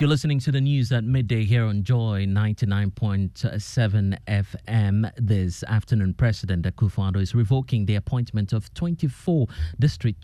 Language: English